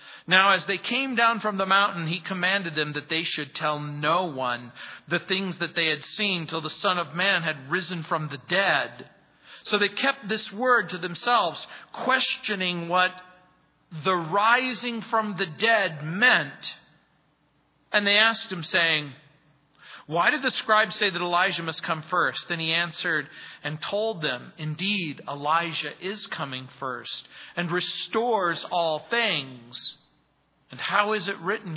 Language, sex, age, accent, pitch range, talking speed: English, male, 40-59, American, 155-200 Hz, 155 wpm